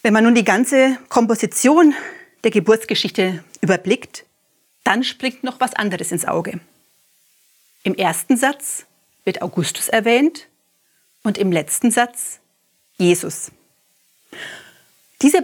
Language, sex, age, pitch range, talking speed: German, female, 30-49, 180-245 Hz, 110 wpm